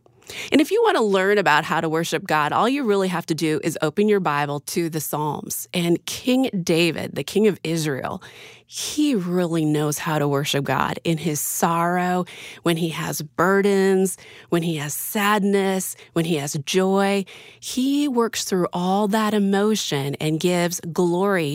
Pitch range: 160-215 Hz